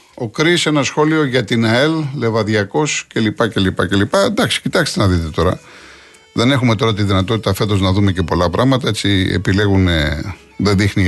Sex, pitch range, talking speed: male, 95-135 Hz, 185 wpm